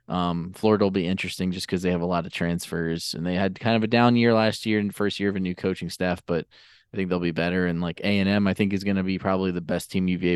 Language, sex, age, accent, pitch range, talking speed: English, male, 20-39, American, 90-105 Hz, 295 wpm